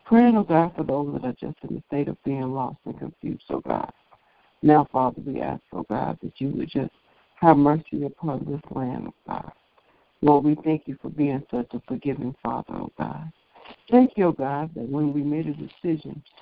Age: 60-79